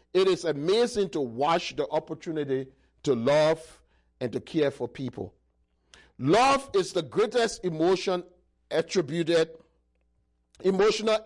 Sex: male